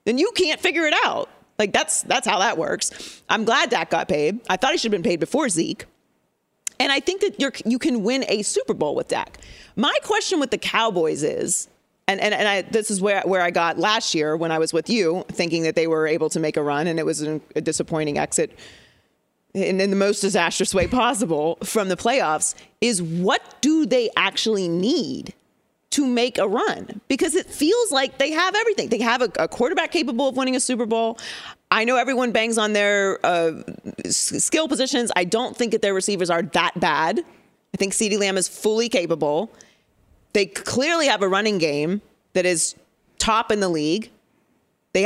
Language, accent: English, American